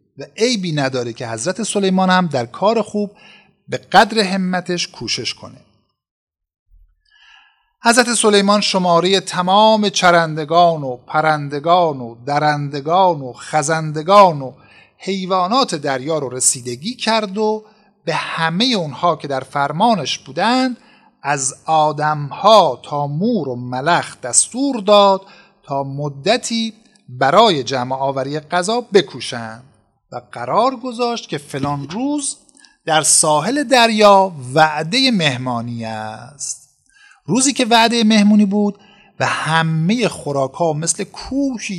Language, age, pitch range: Persian, 50-69, 140-215 Hz